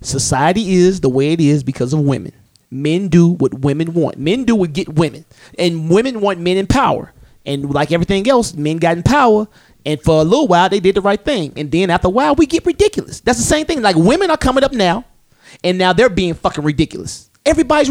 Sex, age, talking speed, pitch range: male, 30-49, 230 wpm, 160-230 Hz